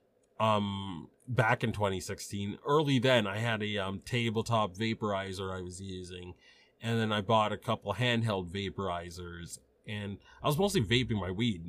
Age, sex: 30-49, male